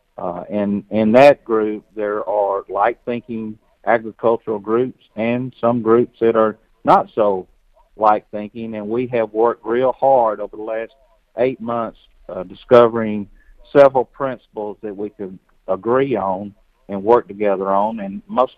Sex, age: male, 50-69